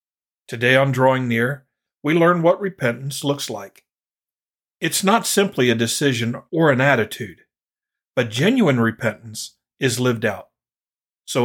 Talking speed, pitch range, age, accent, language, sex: 130 wpm, 120-145 Hz, 50-69, American, English, male